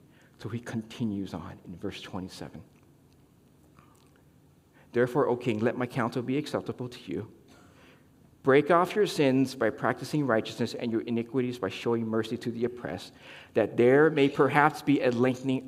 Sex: male